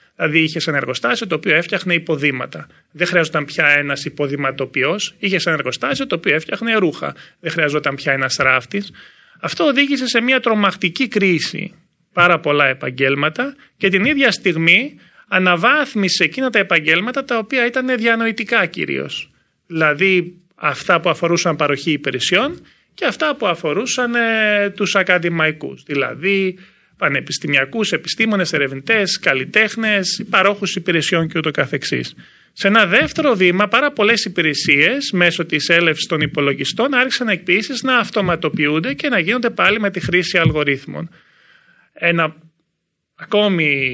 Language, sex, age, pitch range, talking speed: Greek, male, 30-49, 155-220 Hz, 130 wpm